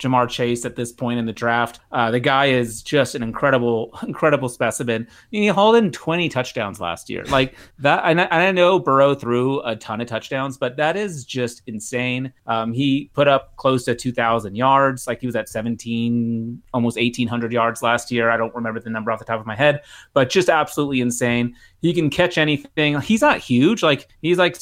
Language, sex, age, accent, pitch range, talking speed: English, male, 30-49, American, 115-140 Hz, 210 wpm